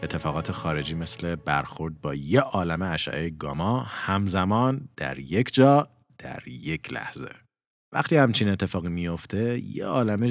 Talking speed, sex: 135 wpm, male